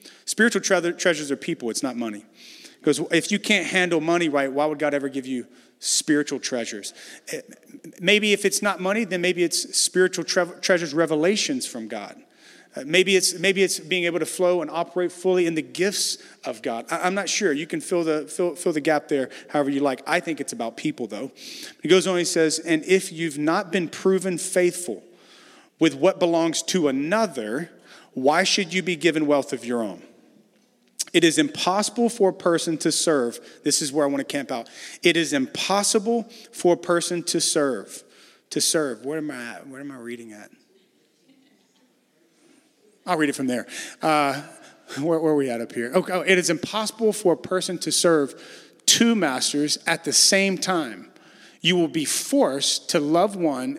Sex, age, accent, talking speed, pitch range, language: male, 40-59, American, 195 wpm, 145-185 Hz, English